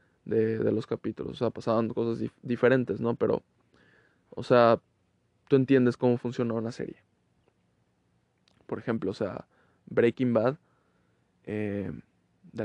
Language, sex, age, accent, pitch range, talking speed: Spanish, male, 20-39, Mexican, 115-135 Hz, 130 wpm